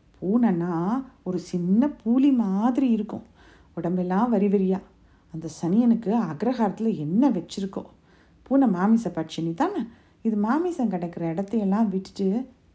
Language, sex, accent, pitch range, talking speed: Tamil, female, native, 170-245 Hz, 110 wpm